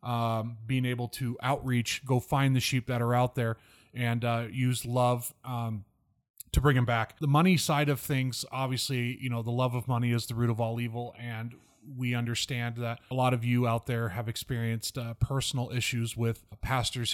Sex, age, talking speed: male, 30-49, 200 wpm